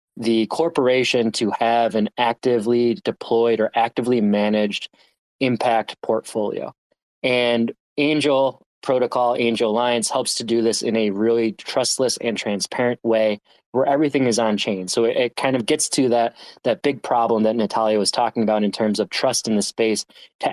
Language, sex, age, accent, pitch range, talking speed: English, male, 20-39, American, 110-125 Hz, 165 wpm